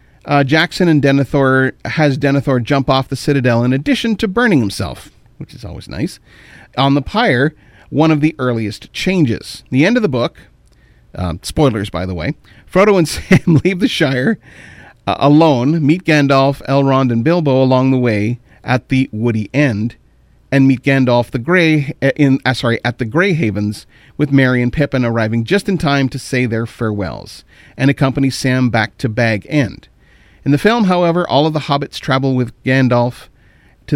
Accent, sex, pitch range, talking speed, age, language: American, male, 120-150 Hz, 175 wpm, 40-59, English